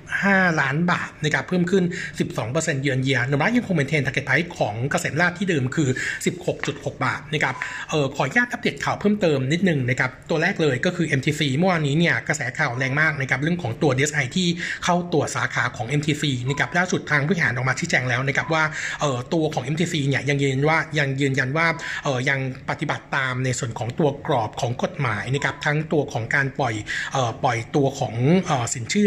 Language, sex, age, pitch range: Thai, male, 60-79, 135-165 Hz